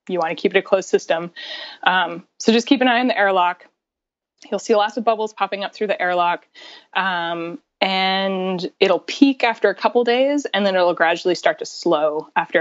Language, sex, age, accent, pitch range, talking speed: English, female, 20-39, American, 170-230 Hz, 205 wpm